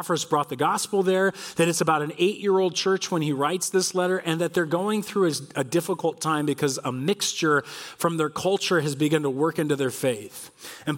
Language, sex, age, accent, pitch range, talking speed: English, male, 40-59, American, 150-200 Hz, 210 wpm